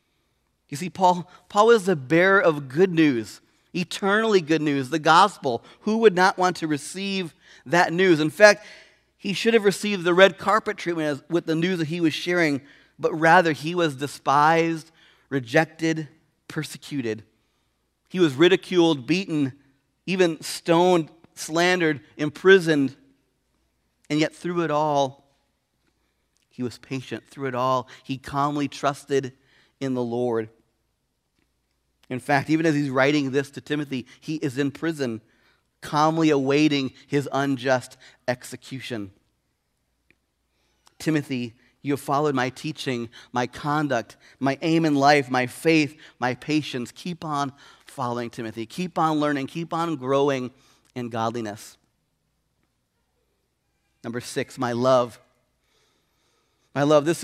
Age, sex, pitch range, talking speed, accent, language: 40-59, male, 130-165 Hz, 130 wpm, American, English